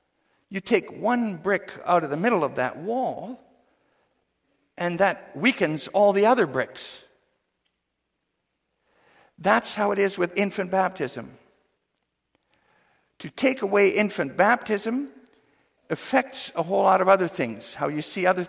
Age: 60-79